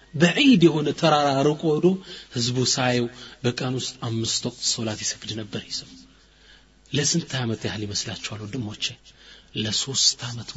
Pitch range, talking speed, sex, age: 120-165 Hz, 115 wpm, male, 30-49